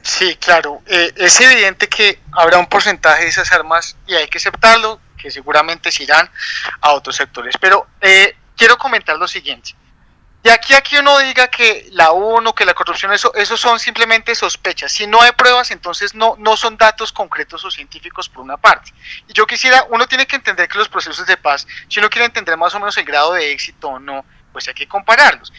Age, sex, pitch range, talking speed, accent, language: 30-49, male, 170-220 Hz, 210 wpm, Colombian, Spanish